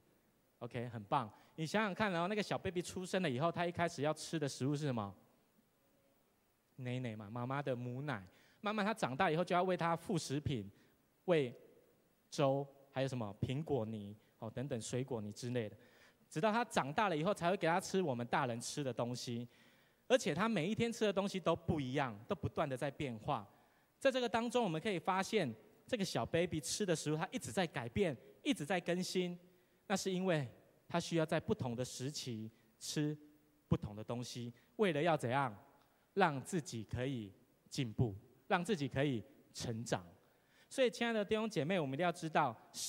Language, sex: Chinese, male